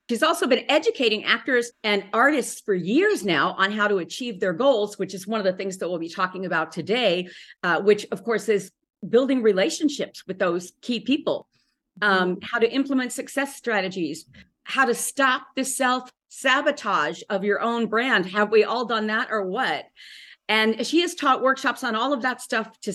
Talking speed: 190 wpm